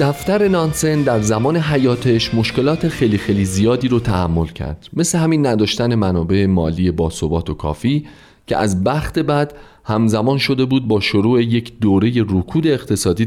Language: Persian